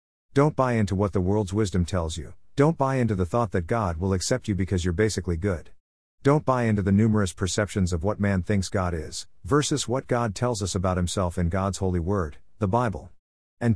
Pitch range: 90-115 Hz